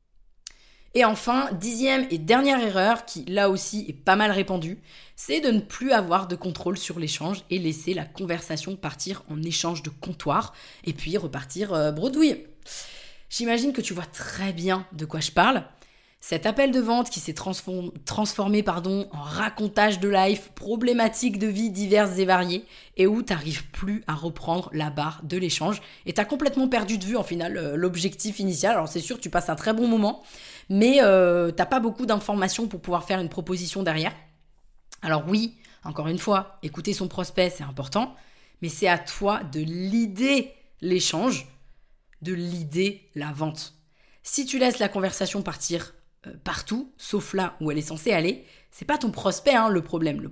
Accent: French